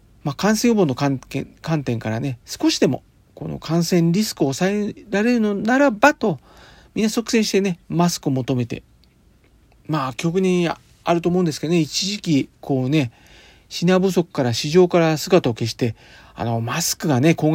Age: 40-59